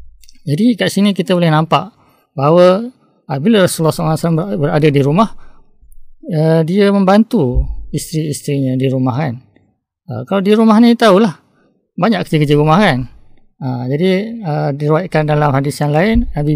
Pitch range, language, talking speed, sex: 140-185 Hz, Malay, 130 wpm, male